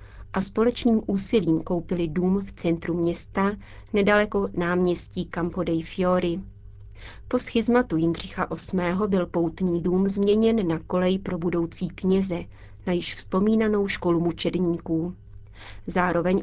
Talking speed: 115 wpm